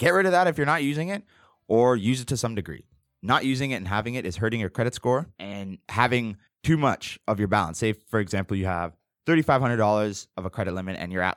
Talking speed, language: 250 wpm, English